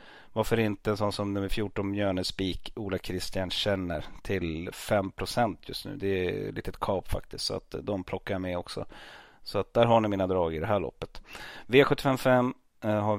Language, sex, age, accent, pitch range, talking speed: Swedish, male, 30-49, native, 95-110 Hz, 190 wpm